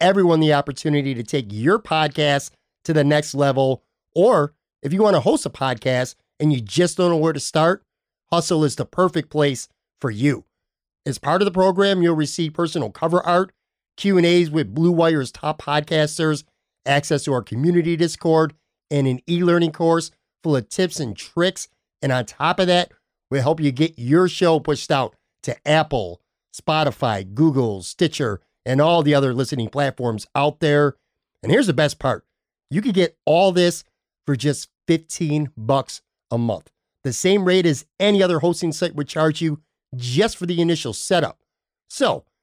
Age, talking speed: 50-69, 175 wpm